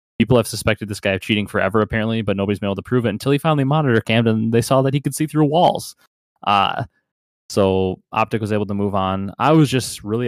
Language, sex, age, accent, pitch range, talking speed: English, male, 20-39, American, 95-115 Hz, 240 wpm